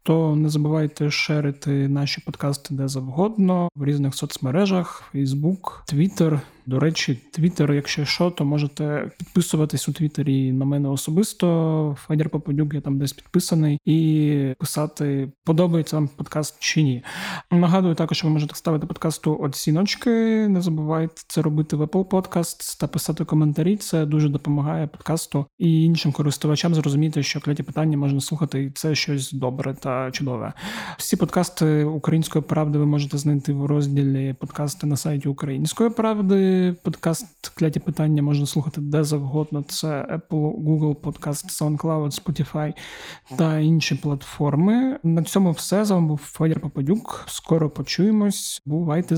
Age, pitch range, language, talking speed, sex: 30-49, 145-165 Hz, Ukrainian, 145 wpm, male